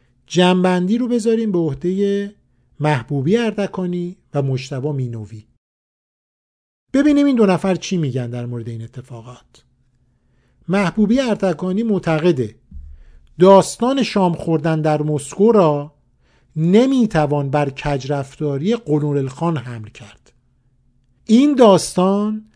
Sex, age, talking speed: male, 50-69, 100 wpm